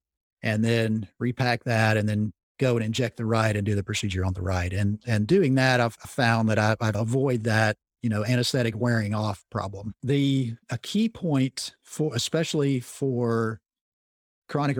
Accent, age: American, 50-69